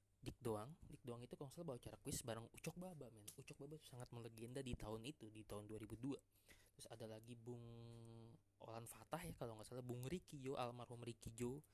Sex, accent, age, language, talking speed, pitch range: male, native, 20-39, Indonesian, 205 wpm, 110-135 Hz